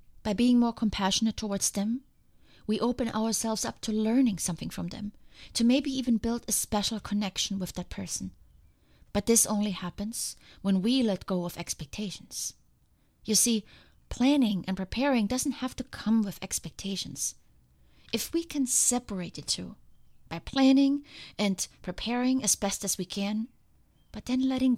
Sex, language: female, English